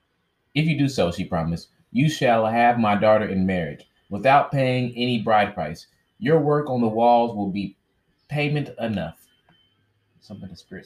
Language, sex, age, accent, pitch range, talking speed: English, male, 20-39, American, 105-135 Hz, 165 wpm